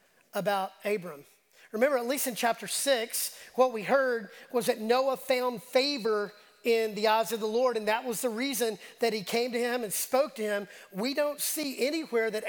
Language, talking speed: English, 195 wpm